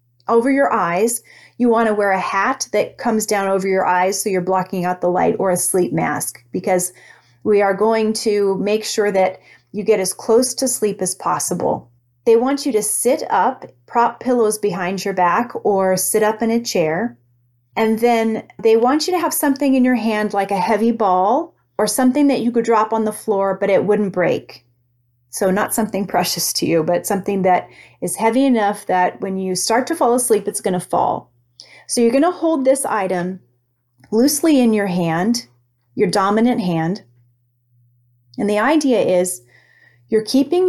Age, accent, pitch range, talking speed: 30-49, American, 175-230 Hz, 190 wpm